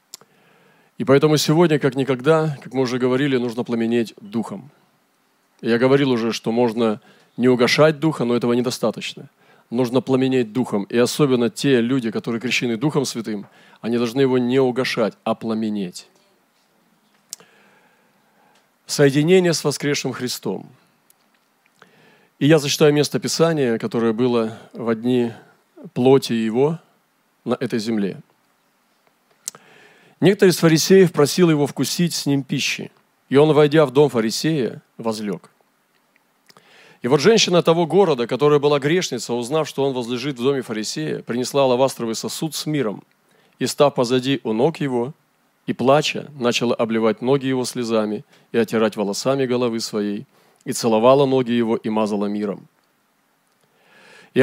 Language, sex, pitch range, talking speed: Russian, male, 120-150 Hz, 135 wpm